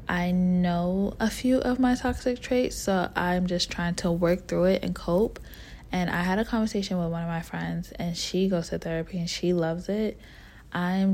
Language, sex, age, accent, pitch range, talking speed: English, female, 20-39, American, 170-185 Hz, 205 wpm